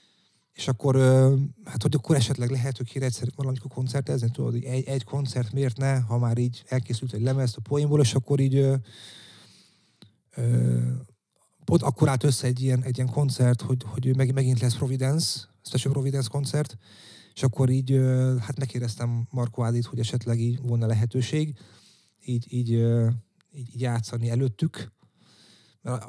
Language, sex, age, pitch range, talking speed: Hungarian, male, 30-49, 120-140 Hz, 160 wpm